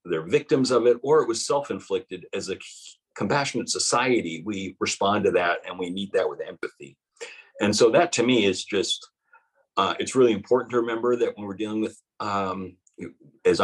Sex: male